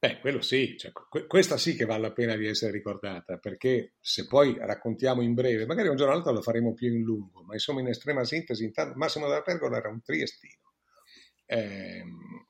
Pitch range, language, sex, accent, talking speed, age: 110-135 Hz, Italian, male, native, 200 wpm, 50-69